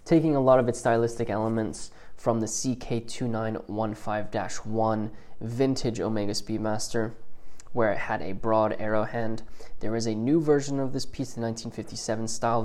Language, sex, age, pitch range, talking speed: English, male, 20-39, 110-125 Hz, 145 wpm